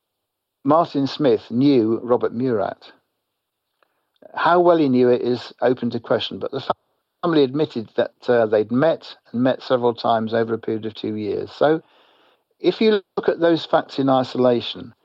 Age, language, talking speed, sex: 60-79, English, 165 wpm, male